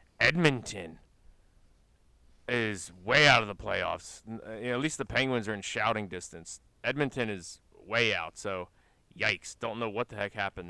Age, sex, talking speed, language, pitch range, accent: 30-49, male, 165 wpm, English, 95-125 Hz, American